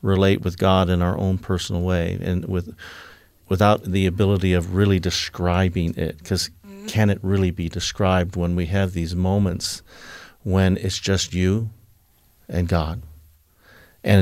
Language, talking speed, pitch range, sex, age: English, 150 wpm, 85-95 Hz, male, 50-69